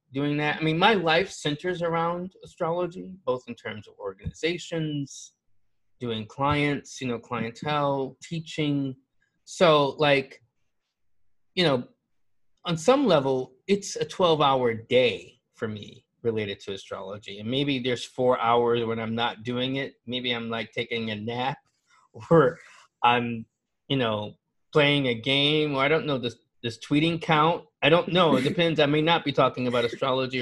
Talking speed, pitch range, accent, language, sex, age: 160 wpm, 120-155 Hz, American, English, male, 20-39